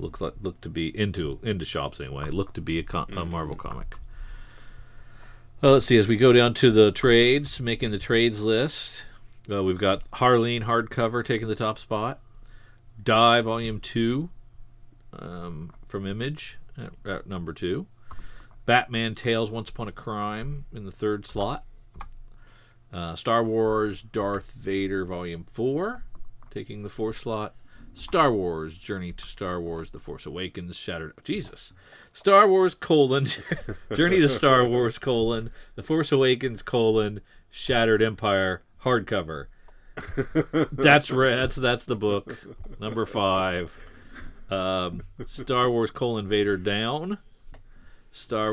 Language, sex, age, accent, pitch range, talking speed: English, male, 40-59, American, 95-120 Hz, 135 wpm